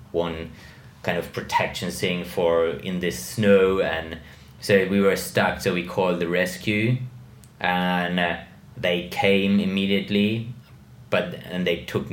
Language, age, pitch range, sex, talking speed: English, 20-39, 80-95 Hz, male, 135 wpm